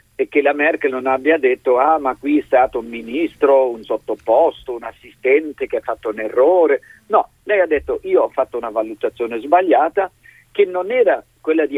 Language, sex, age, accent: Italian, male, 50-69, native